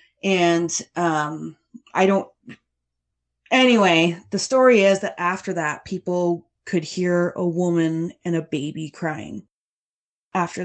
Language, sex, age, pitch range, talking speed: English, female, 30-49, 170-215 Hz, 120 wpm